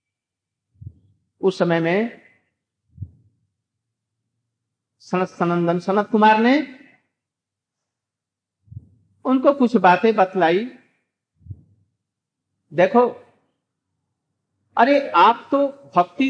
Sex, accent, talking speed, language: male, native, 65 wpm, Hindi